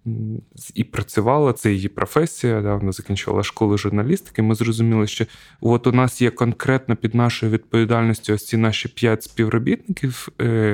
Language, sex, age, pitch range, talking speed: Ukrainian, male, 20-39, 110-130 Hz, 150 wpm